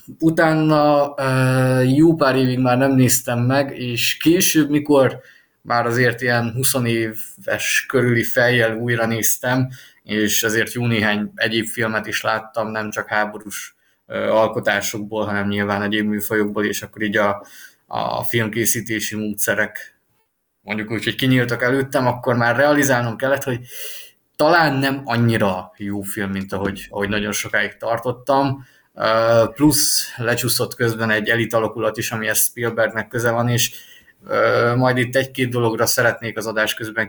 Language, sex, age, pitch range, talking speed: Hungarian, male, 20-39, 110-130 Hz, 135 wpm